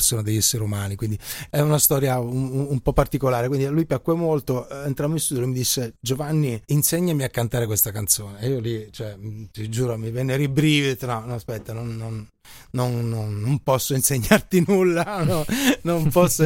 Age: 30-49